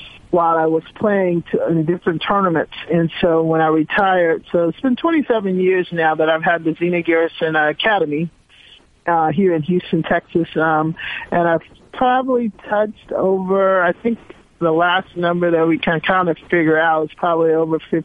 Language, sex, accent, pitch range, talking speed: English, male, American, 160-180 Hz, 175 wpm